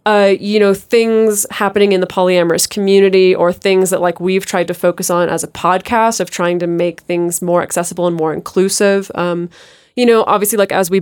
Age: 20-39